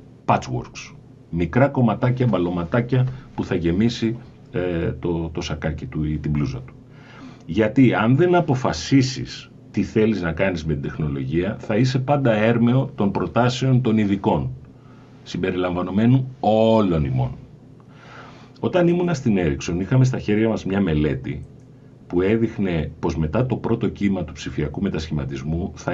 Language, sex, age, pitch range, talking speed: Greek, male, 40-59, 90-130 Hz, 135 wpm